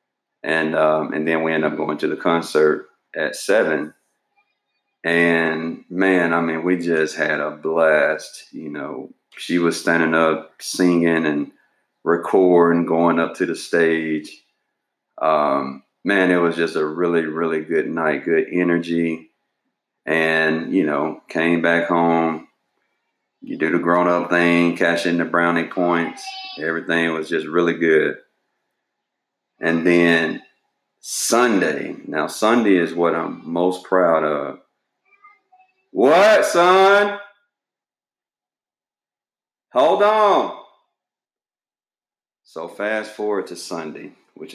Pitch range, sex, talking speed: 80-95 Hz, male, 120 wpm